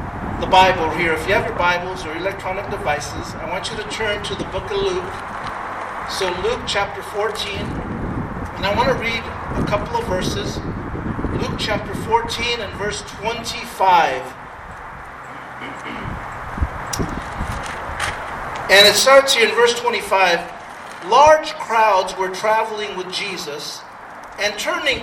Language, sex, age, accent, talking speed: English, male, 50-69, American, 130 wpm